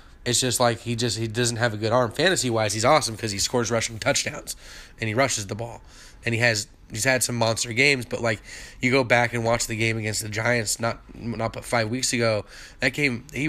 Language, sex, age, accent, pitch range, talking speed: English, male, 20-39, American, 110-125 Hz, 240 wpm